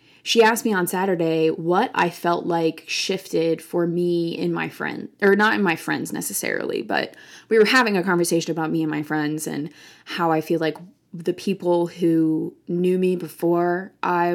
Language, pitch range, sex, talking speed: English, 165-205 Hz, female, 185 wpm